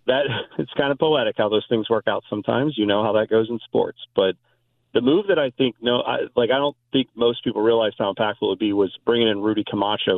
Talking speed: 255 wpm